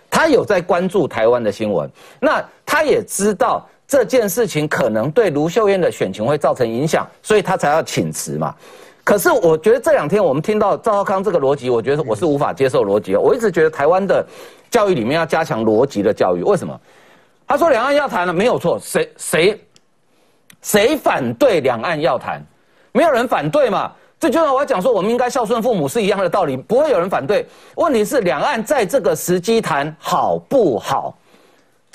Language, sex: Chinese, male